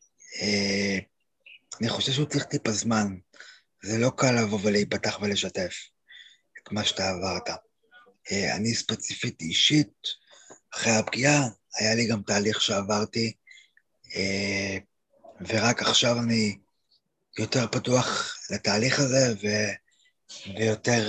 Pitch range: 105-125 Hz